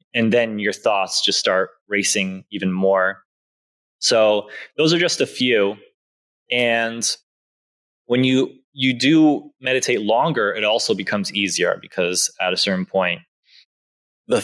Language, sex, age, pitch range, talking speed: English, male, 20-39, 105-125 Hz, 135 wpm